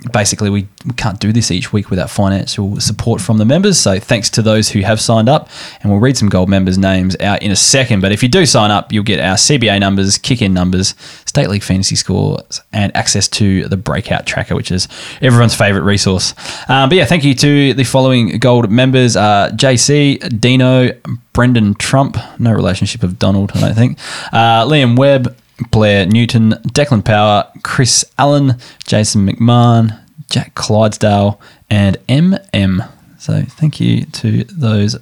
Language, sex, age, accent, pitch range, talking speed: English, male, 20-39, Australian, 100-130 Hz, 175 wpm